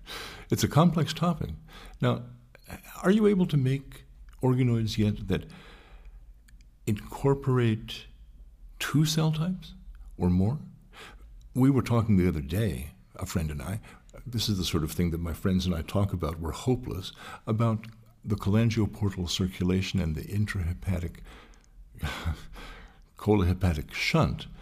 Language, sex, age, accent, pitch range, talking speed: English, male, 60-79, American, 90-125 Hz, 130 wpm